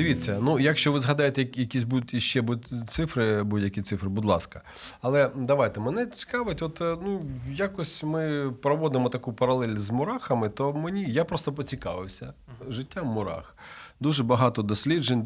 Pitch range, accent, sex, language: 110-140 Hz, native, male, Ukrainian